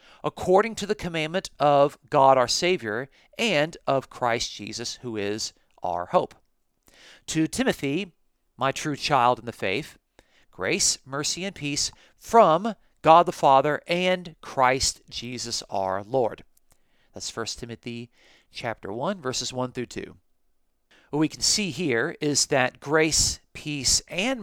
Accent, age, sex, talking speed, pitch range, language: American, 40-59, male, 140 wpm, 120-160 Hz, English